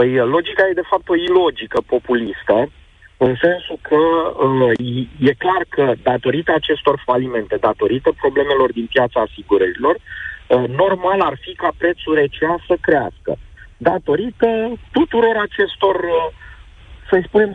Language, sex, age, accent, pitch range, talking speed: Romanian, male, 40-59, native, 130-210 Hz, 120 wpm